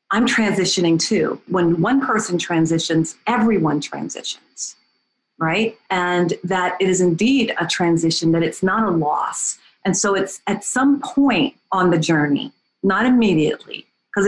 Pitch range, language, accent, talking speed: 165-210 Hz, English, American, 145 wpm